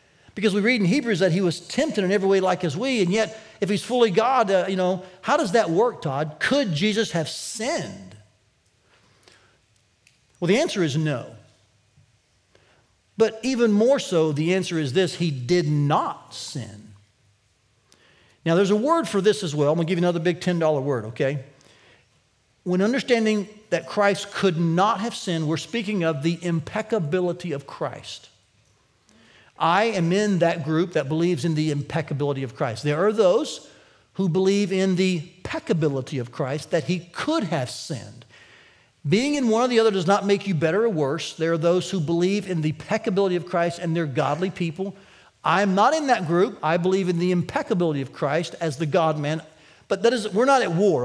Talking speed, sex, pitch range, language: 190 wpm, male, 140-200 Hz, English